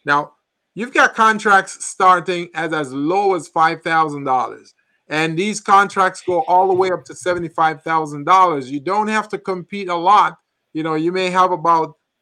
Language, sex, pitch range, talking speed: English, male, 145-200 Hz, 160 wpm